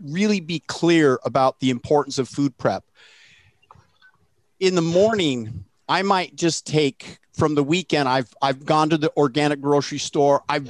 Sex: male